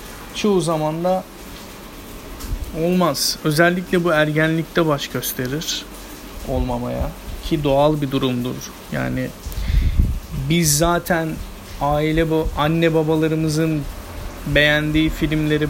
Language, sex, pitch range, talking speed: Turkish, male, 130-165 Hz, 90 wpm